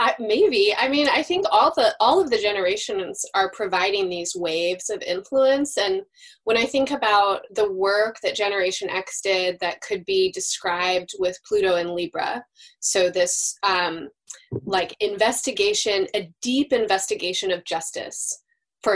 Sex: female